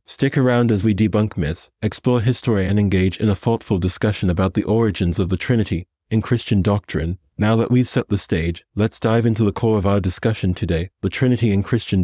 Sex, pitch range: male, 95-115 Hz